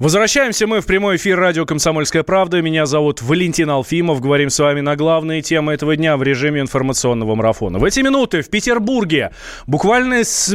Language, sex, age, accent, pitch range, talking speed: Russian, male, 20-39, native, 140-200 Hz, 175 wpm